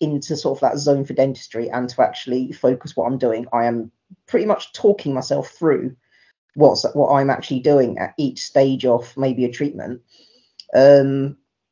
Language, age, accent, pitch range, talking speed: English, 40-59, British, 125-150 Hz, 175 wpm